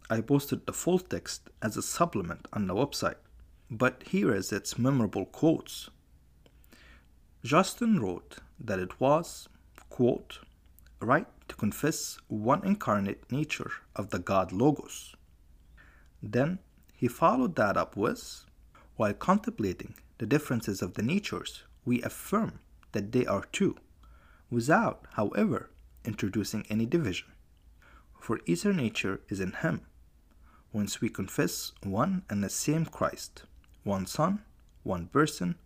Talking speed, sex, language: 125 wpm, male, English